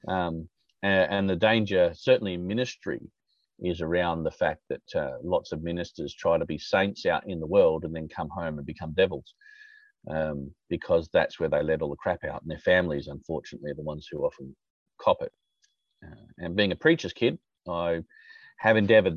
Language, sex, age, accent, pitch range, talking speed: English, male, 30-49, Australian, 90-130 Hz, 190 wpm